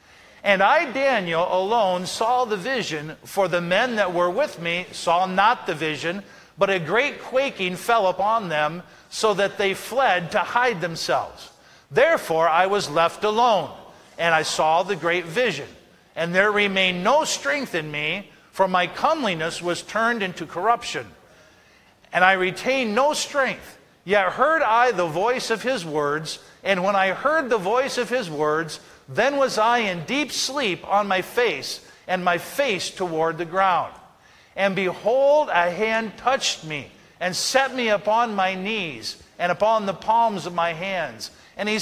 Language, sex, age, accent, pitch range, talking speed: English, male, 50-69, American, 175-240 Hz, 165 wpm